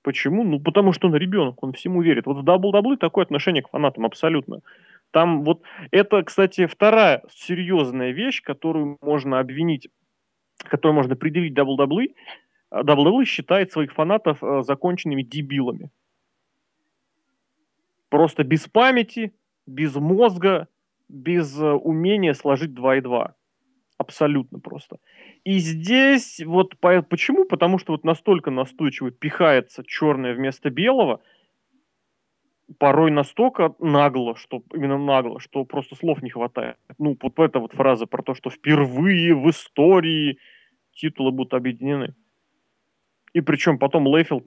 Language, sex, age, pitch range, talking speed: Russian, male, 30-49, 135-180 Hz, 125 wpm